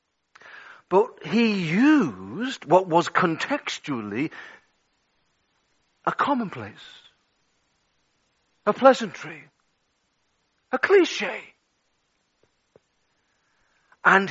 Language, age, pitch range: English, 50-69, 135-210 Hz